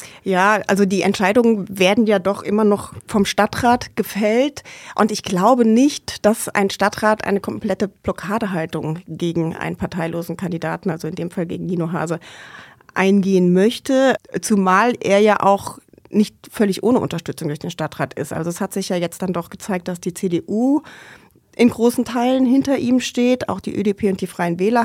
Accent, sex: German, female